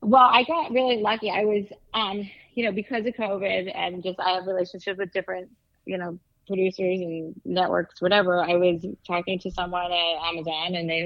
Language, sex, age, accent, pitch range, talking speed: English, female, 30-49, American, 170-210 Hz, 190 wpm